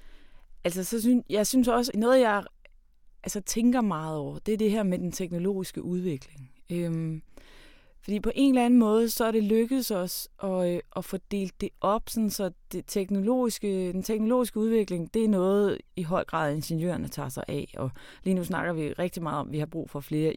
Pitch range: 160-205 Hz